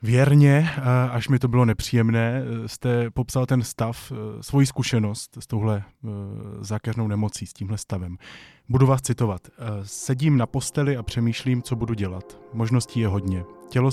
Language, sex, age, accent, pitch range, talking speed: Czech, male, 20-39, native, 105-130 Hz, 145 wpm